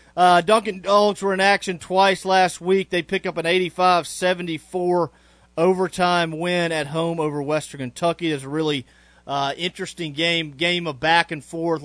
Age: 40-59